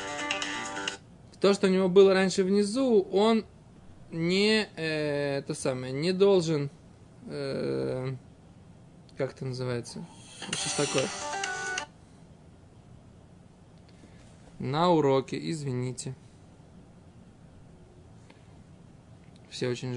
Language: Russian